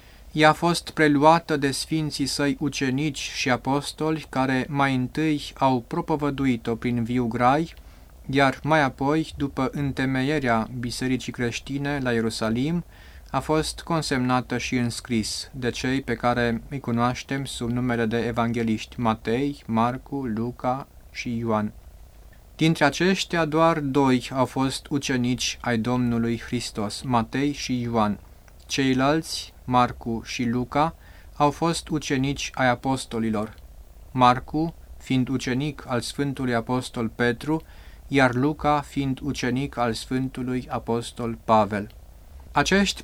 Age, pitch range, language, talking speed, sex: 20-39, 120-145 Hz, Romanian, 120 wpm, male